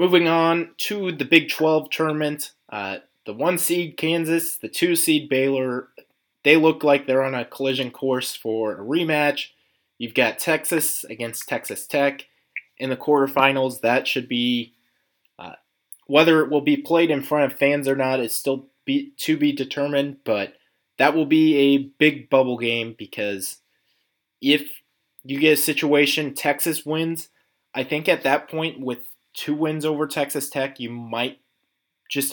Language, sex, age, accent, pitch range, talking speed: English, male, 20-39, American, 125-150 Hz, 160 wpm